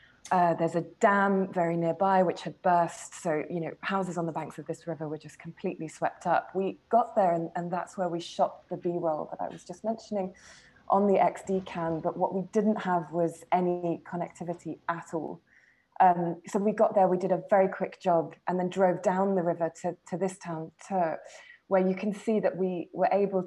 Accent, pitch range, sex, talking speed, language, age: British, 165-190 Hz, female, 215 wpm, English, 20-39